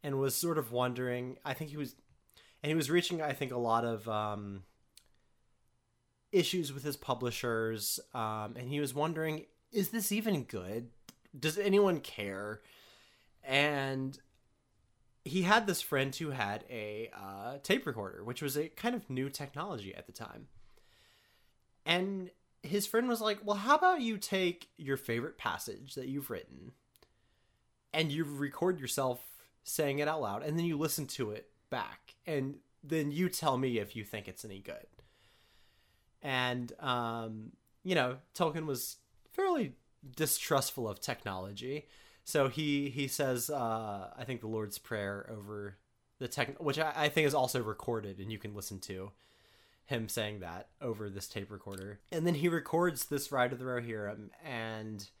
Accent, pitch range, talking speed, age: American, 110-155 Hz, 165 wpm, 30-49